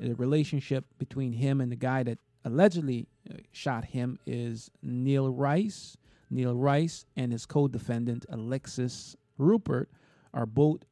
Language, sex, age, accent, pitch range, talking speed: English, male, 40-59, American, 125-155 Hz, 125 wpm